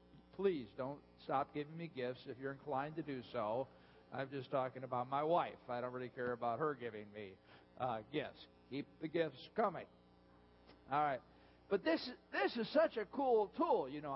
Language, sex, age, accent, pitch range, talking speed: English, male, 50-69, American, 125-195 Hz, 185 wpm